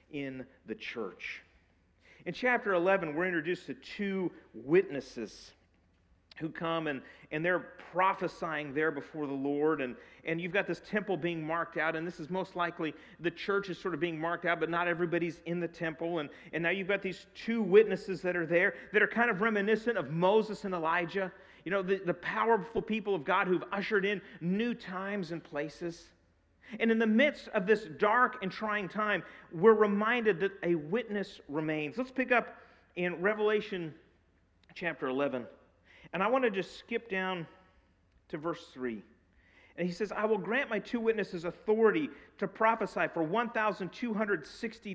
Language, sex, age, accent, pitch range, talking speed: English, male, 40-59, American, 155-210 Hz, 175 wpm